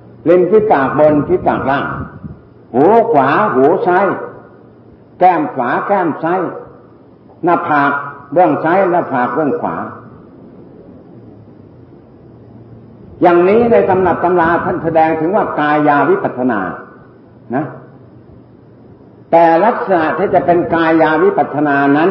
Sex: male